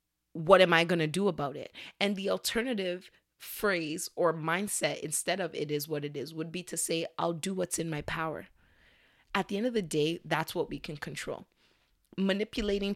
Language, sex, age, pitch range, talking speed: English, female, 20-39, 155-195 Hz, 195 wpm